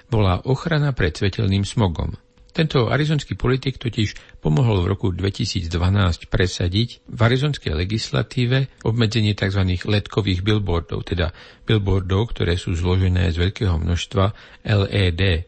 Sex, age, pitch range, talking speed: male, 50-69, 90-115 Hz, 115 wpm